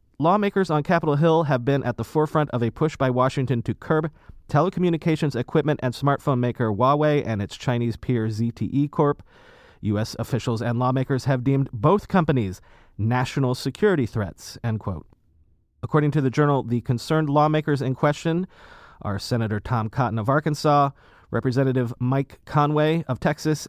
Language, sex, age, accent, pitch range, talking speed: English, male, 30-49, American, 115-150 Hz, 155 wpm